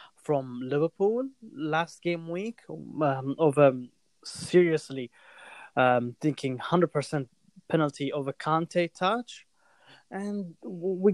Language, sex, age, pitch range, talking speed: Arabic, male, 20-39, 145-200 Hz, 100 wpm